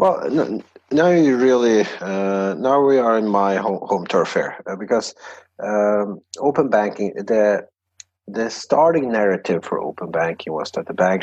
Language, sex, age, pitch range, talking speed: English, male, 30-49, 90-105 Hz, 165 wpm